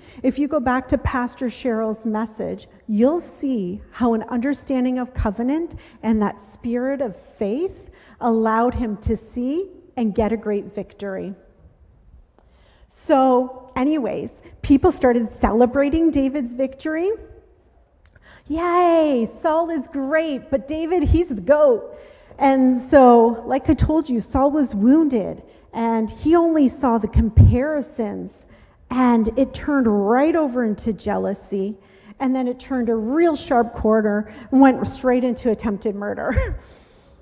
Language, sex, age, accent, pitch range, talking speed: English, female, 40-59, American, 225-300 Hz, 130 wpm